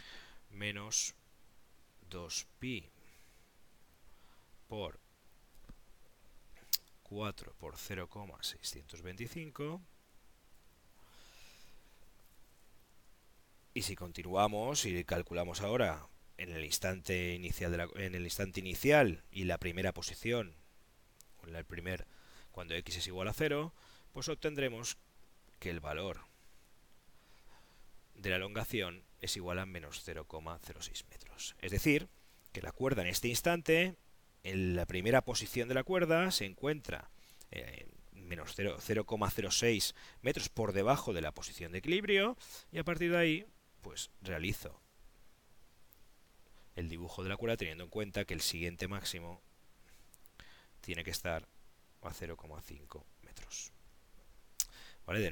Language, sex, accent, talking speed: Spanish, male, Spanish, 110 wpm